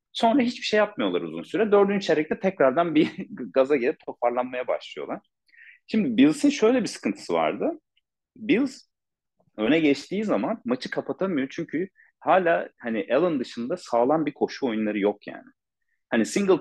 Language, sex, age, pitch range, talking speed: Turkish, male, 40-59, 140-230 Hz, 140 wpm